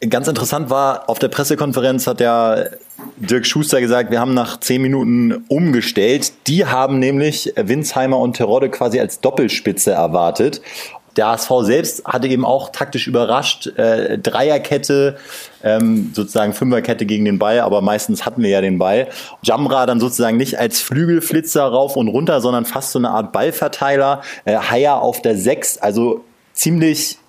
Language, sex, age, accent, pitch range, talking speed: German, male, 30-49, German, 110-135 Hz, 160 wpm